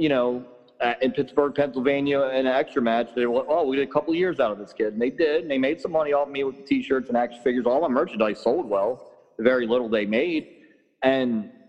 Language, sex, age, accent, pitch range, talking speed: English, male, 40-59, American, 125-170 Hz, 250 wpm